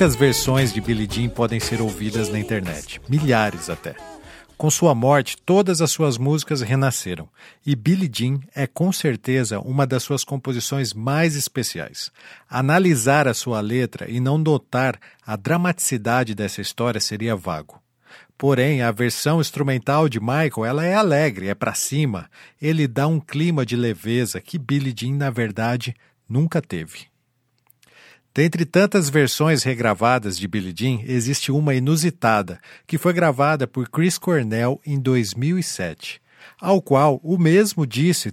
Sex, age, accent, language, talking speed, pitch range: male, 50-69, Brazilian, Portuguese, 145 wpm, 120-155 Hz